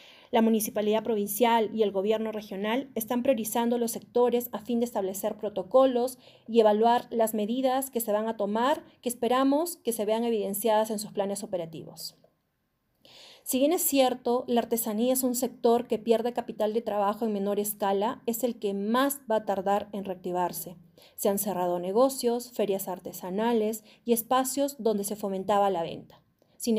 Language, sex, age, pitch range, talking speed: Spanish, female, 30-49, 200-245 Hz, 170 wpm